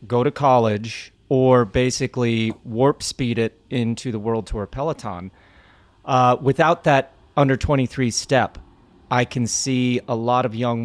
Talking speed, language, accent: 145 wpm, English, American